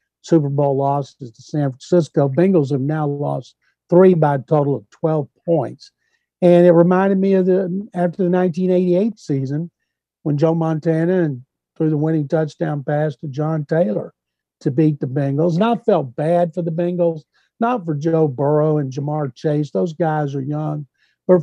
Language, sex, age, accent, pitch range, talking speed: English, male, 60-79, American, 145-170 Hz, 175 wpm